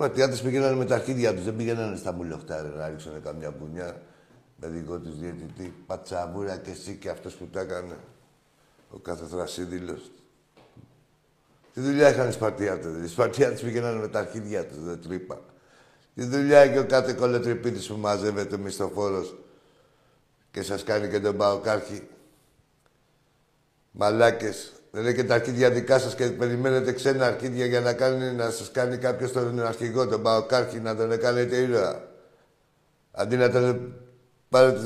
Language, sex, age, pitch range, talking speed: Greek, male, 60-79, 105-130 Hz, 155 wpm